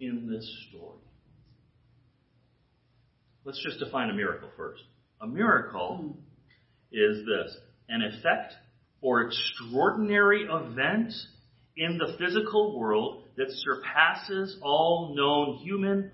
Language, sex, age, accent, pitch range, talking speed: English, male, 40-59, American, 125-170 Hz, 100 wpm